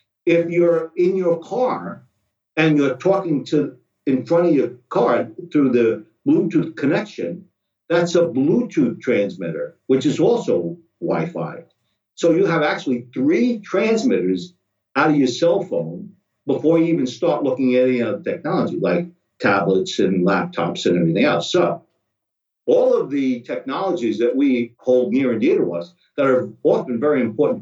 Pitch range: 120-175 Hz